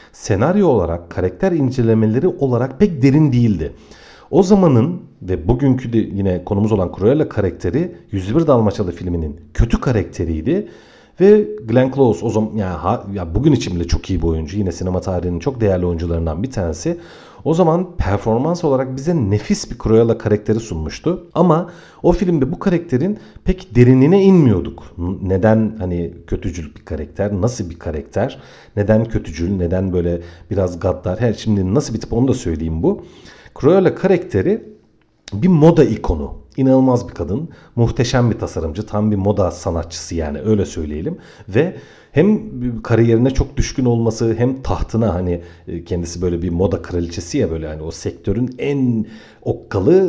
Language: Turkish